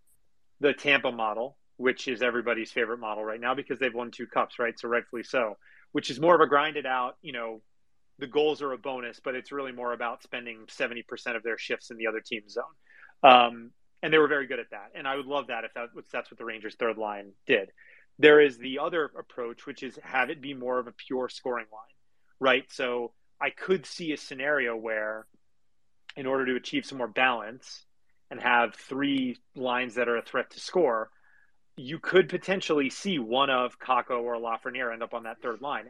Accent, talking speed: American, 210 wpm